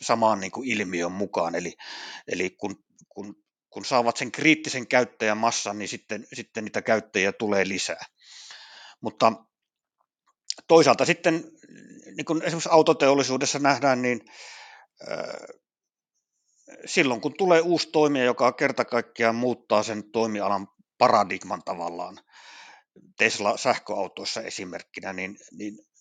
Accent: native